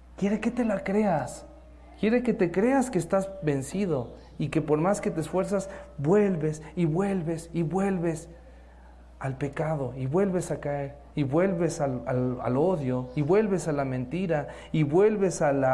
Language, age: Spanish, 40-59